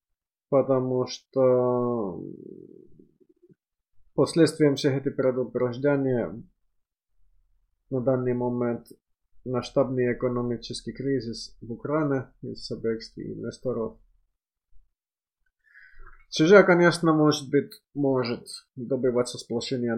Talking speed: 70 wpm